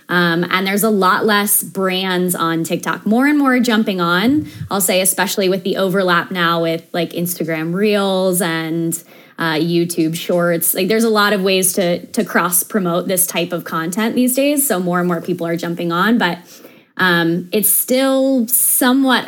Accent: American